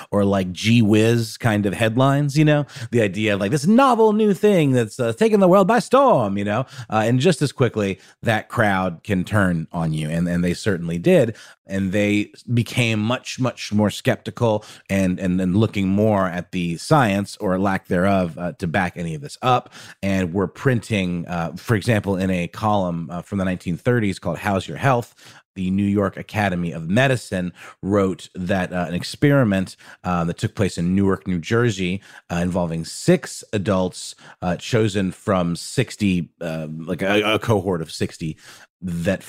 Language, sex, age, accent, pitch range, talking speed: English, male, 30-49, American, 90-120 Hz, 180 wpm